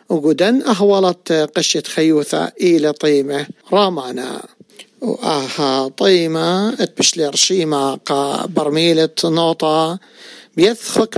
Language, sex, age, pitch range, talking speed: English, male, 50-69, 160-195 Hz, 75 wpm